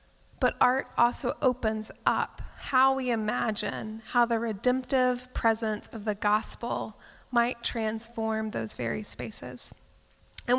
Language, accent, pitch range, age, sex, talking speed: English, American, 215-255 Hz, 20-39, female, 120 wpm